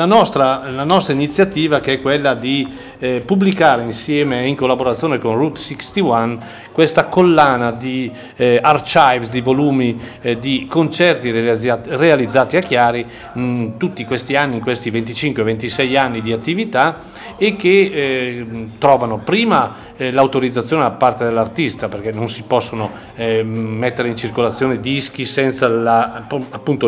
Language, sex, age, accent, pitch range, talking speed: Italian, male, 40-59, native, 115-150 Hz, 140 wpm